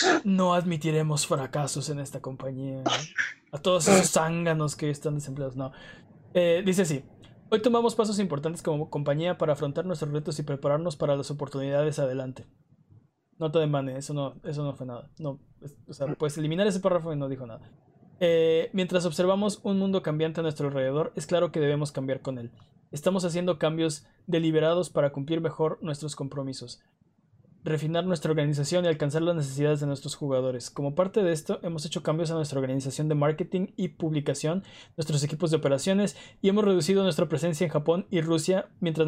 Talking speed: 180 wpm